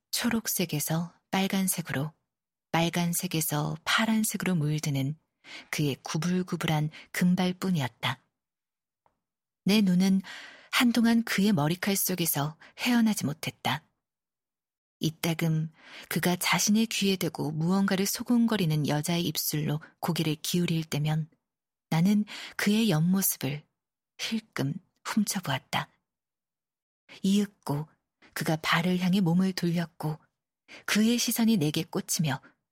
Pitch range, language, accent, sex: 155-205 Hz, Korean, native, female